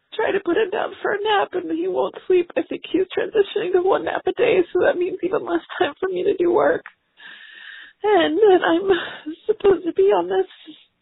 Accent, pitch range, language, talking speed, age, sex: American, 345-415 Hz, English, 220 wpm, 30-49, female